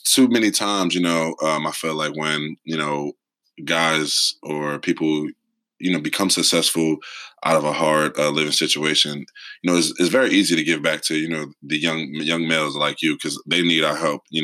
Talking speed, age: 210 wpm, 20-39